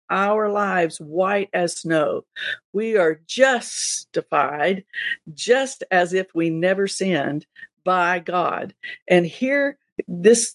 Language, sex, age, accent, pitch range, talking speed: English, female, 50-69, American, 155-200 Hz, 110 wpm